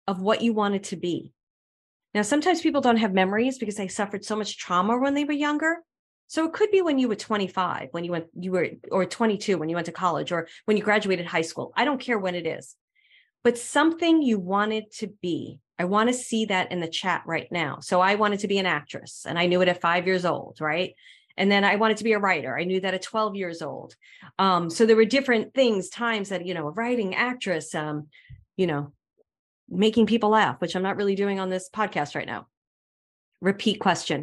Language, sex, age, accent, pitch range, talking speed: English, female, 40-59, American, 175-220 Hz, 230 wpm